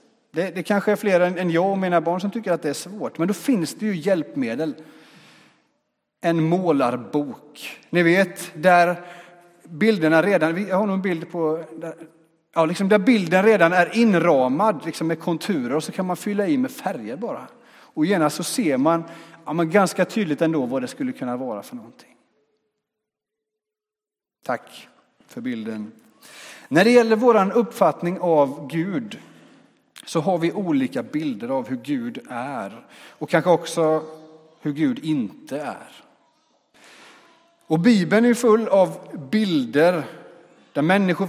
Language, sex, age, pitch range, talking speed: Swedish, male, 30-49, 165-235 Hz, 135 wpm